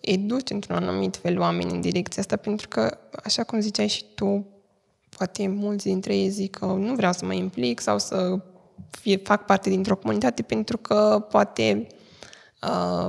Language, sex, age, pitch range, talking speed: Romanian, female, 20-39, 190-225 Hz, 170 wpm